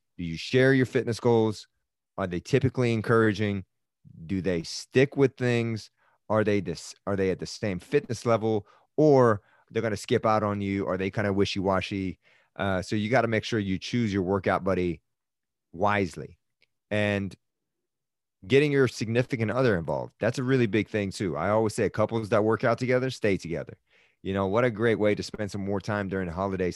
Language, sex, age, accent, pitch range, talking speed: English, male, 30-49, American, 95-115 Hz, 195 wpm